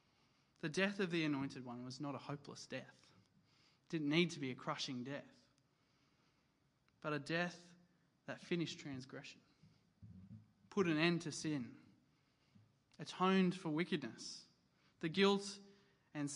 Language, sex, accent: English, male, Australian